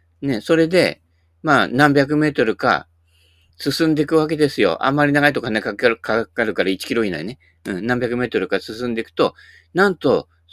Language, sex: Japanese, male